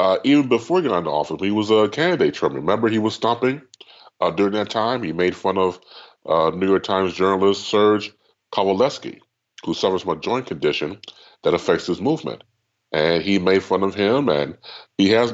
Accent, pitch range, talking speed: American, 100-170 Hz, 195 wpm